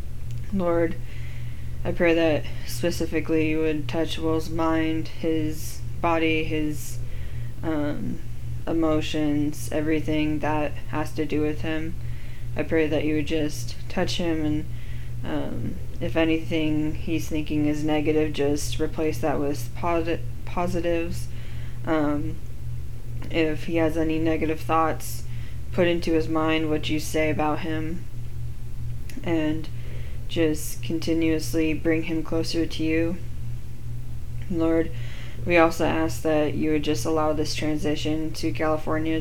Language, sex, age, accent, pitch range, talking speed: English, female, 20-39, American, 120-160 Hz, 120 wpm